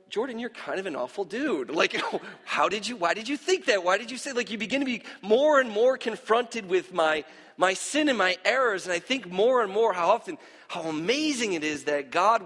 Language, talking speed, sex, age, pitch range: English, 240 wpm, male, 40-59, 165-235 Hz